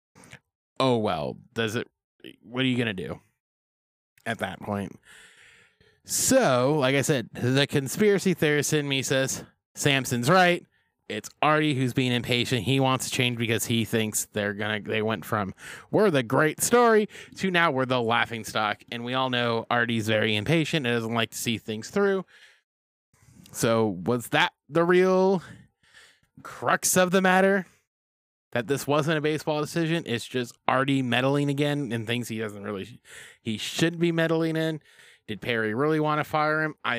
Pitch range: 115-155 Hz